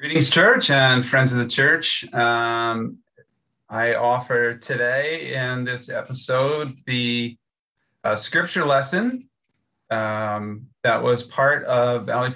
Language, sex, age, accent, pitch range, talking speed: English, male, 30-49, American, 115-130 Hz, 115 wpm